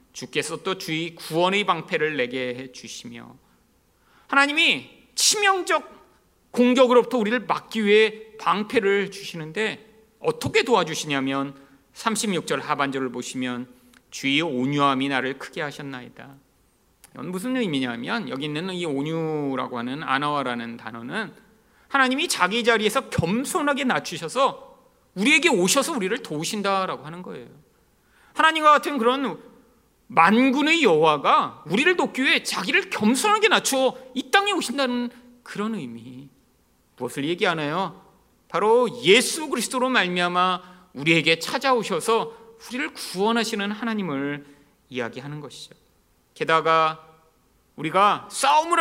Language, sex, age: Korean, male, 40-59